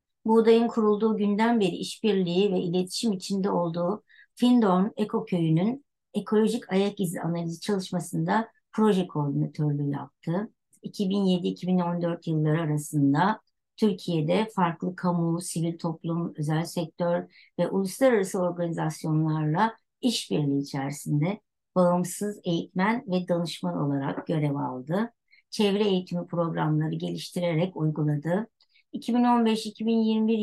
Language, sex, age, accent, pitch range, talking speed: Turkish, male, 60-79, native, 165-215 Hz, 95 wpm